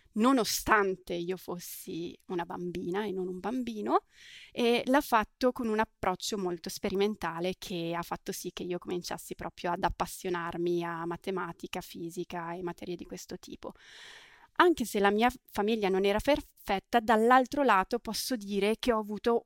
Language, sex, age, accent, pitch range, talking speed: Italian, female, 20-39, native, 180-215 Hz, 155 wpm